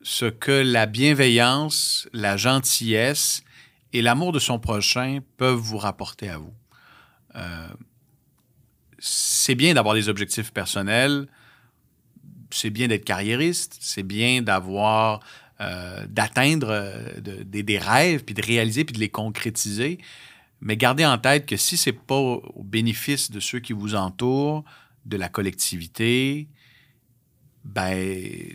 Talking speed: 130 wpm